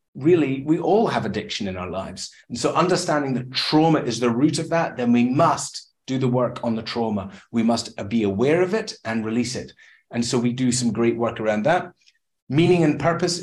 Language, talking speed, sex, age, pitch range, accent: English, 215 wpm, male, 30-49, 120-160 Hz, British